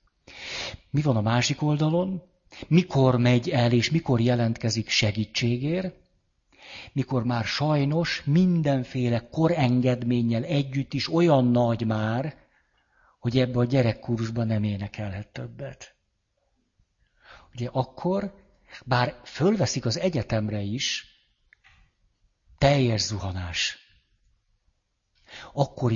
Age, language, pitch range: 60-79, Hungarian, 110-140 Hz